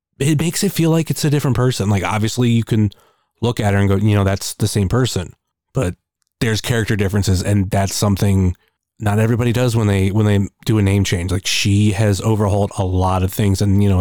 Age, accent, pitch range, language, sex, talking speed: 30-49, American, 100-125 Hz, English, male, 225 wpm